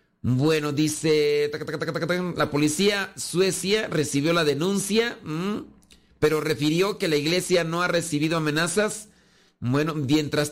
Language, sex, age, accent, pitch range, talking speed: Spanish, male, 40-59, Mexican, 135-180 Hz, 110 wpm